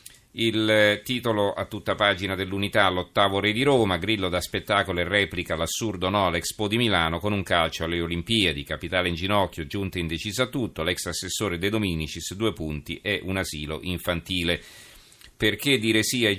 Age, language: 40-59, Italian